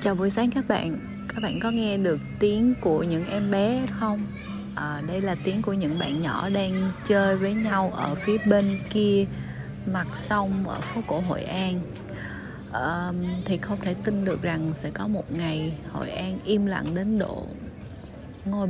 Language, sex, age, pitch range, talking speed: Vietnamese, female, 20-39, 160-200 Hz, 185 wpm